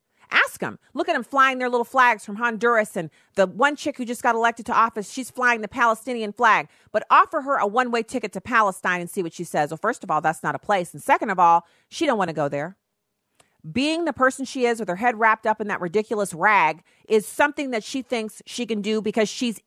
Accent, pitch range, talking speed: American, 195-250 Hz, 245 wpm